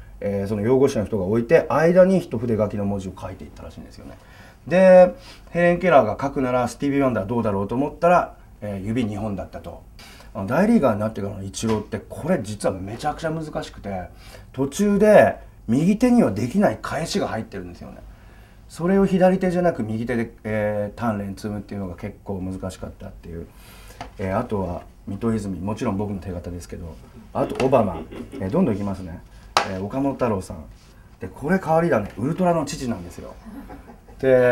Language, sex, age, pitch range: Japanese, male, 30-49, 100-130 Hz